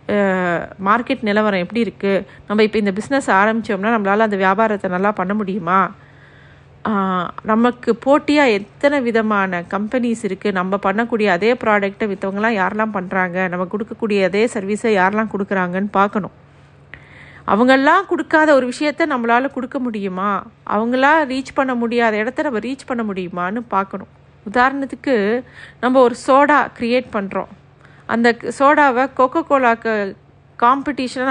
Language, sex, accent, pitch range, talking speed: Tamil, female, native, 200-265 Hz, 120 wpm